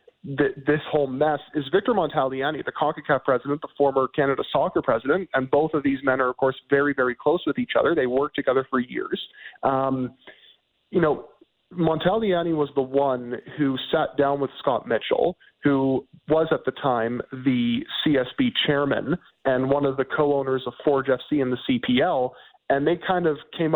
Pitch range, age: 135-150 Hz, 40-59